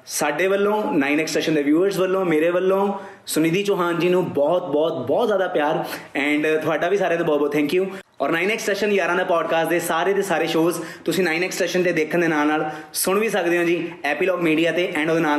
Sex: male